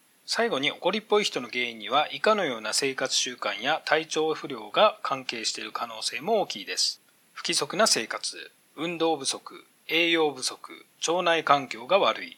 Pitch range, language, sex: 150-210 Hz, Japanese, male